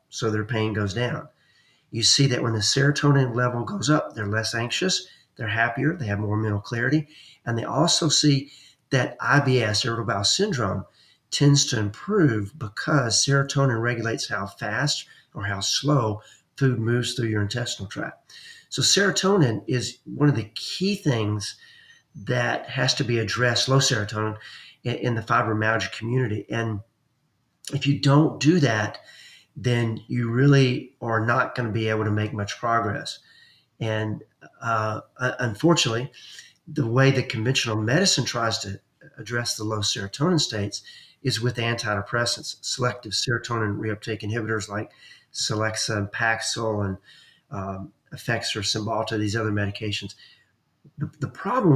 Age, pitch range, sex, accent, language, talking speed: 40-59, 110-140 Hz, male, American, English, 145 wpm